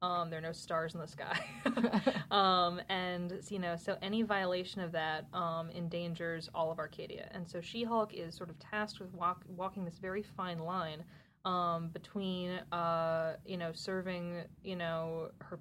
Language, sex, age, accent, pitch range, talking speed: English, female, 20-39, American, 165-185 Hz, 175 wpm